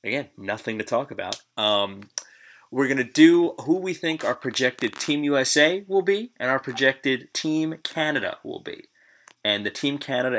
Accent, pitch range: American, 110-150 Hz